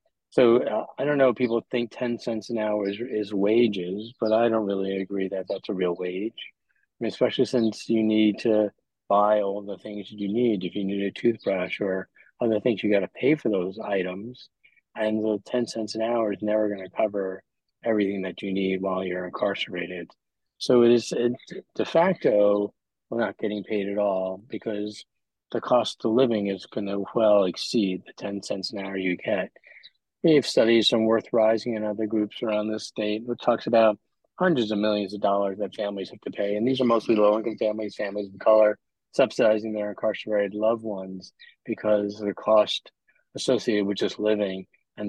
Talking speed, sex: 195 wpm, male